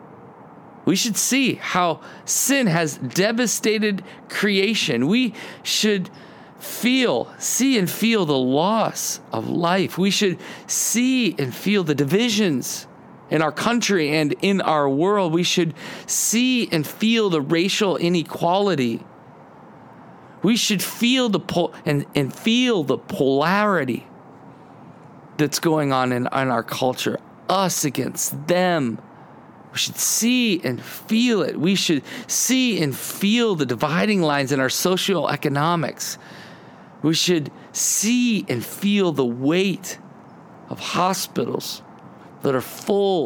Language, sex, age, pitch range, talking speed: English, male, 40-59, 150-210 Hz, 125 wpm